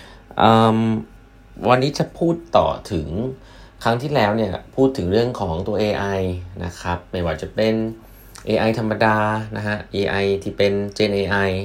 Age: 20-39